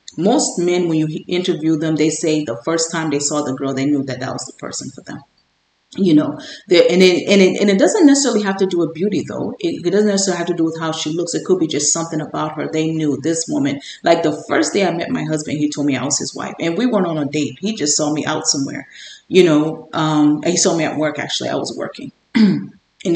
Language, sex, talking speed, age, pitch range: English, female, 270 wpm, 30-49, 155-205 Hz